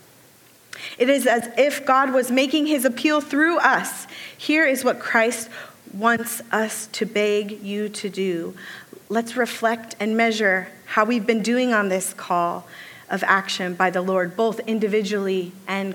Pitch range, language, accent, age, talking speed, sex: 205-265 Hz, English, American, 30-49, 155 wpm, female